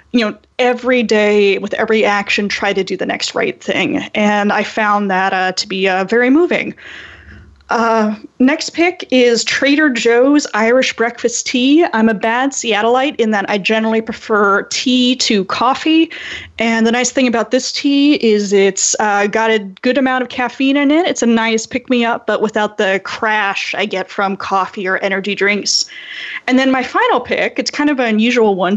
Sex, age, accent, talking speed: female, 20-39, American, 185 wpm